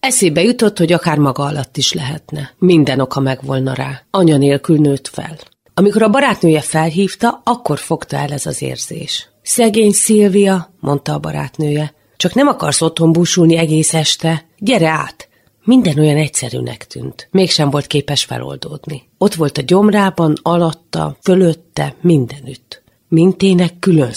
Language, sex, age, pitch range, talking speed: Hungarian, female, 30-49, 140-180 Hz, 140 wpm